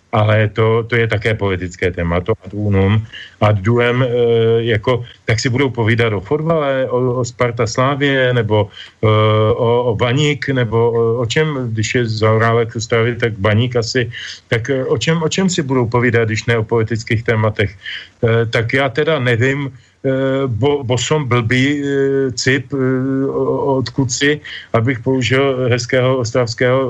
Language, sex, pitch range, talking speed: Slovak, male, 110-130 Hz, 150 wpm